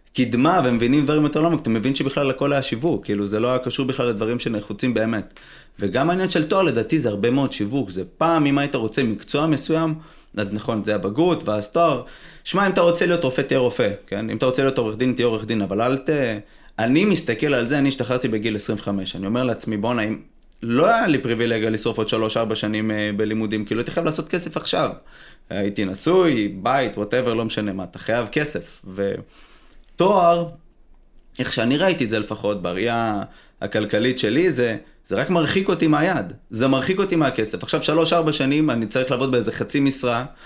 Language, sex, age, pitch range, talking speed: Hebrew, male, 20-39, 115-155 Hz, 170 wpm